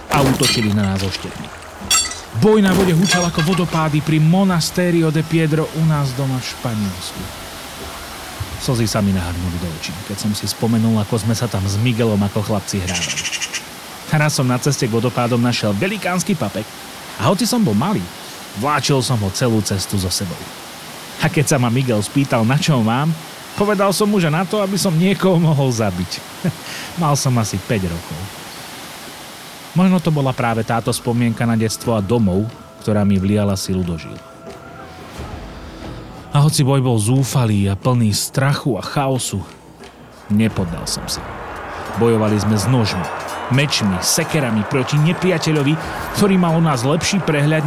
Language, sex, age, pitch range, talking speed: Slovak, male, 30-49, 100-150 Hz, 160 wpm